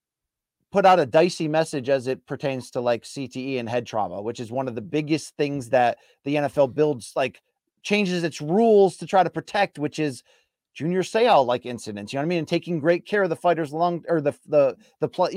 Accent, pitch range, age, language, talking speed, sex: American, 145-195 Hz, 30-49, English, 225 wpm, male